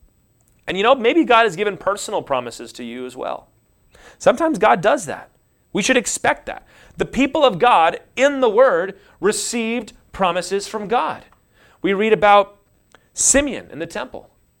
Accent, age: American, 30-49